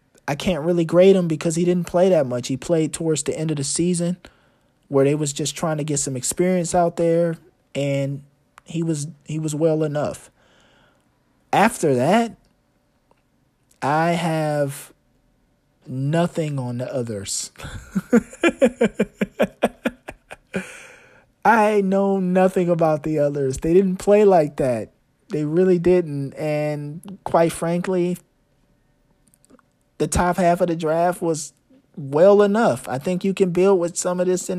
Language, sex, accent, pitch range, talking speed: English, male, American, 145-185 Hz, 140 wpm